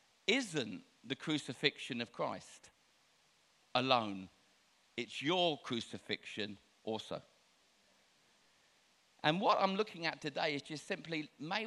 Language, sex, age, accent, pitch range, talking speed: English, male, 50-69, British, 125-160 Hz, 105 wpm